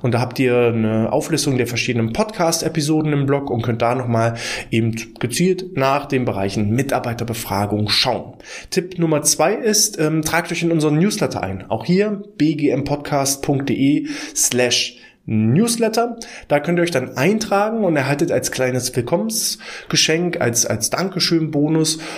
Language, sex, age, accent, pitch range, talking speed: German, male, 20-39, German, 120-165 Hz, 140 wpm